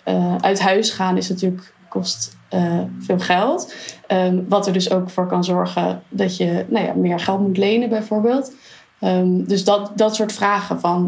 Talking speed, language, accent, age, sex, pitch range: 150 wpm, Dutch, Dutch, 20-39, female, 180-200 Hz